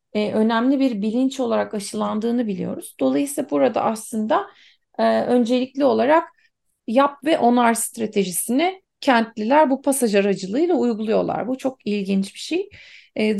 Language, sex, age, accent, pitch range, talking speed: Turkish, female, 30-49, native, 215-285 Hz, 120 wpm